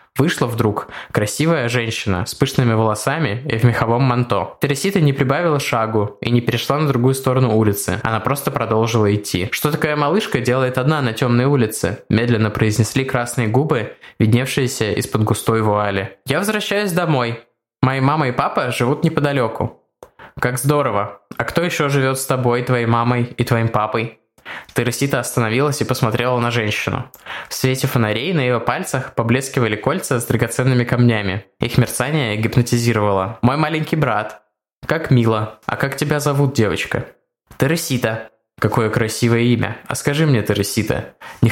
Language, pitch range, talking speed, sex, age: Russian, 110-135 Hz, 150 wpm, male, 20-39